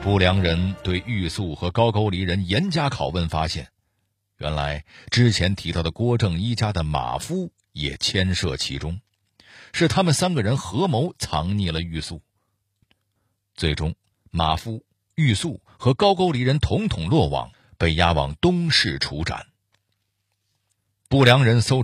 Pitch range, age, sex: 90-120 Hz, 50-69, male